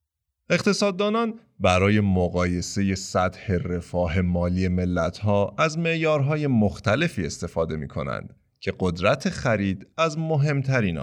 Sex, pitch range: male, 90-145 Hz